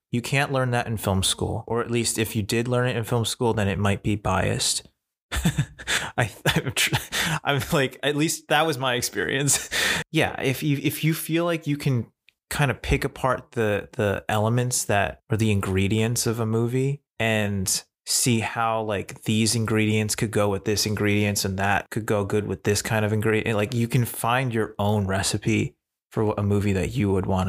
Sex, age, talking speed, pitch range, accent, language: male, 20-39, 200 wpm, 100-120 Hz, American, English